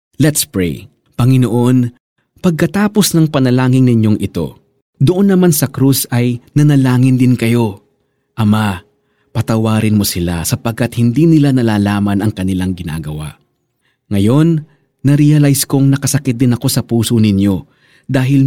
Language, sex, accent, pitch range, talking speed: Filipino, male, native, 105-150 Hz, 120 wpm